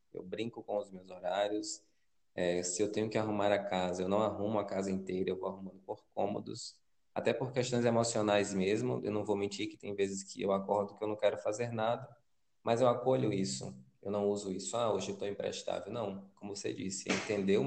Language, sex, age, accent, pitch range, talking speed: Portuguese, male, 20-39, Brazilian, 95-120 Hz, 225 wpm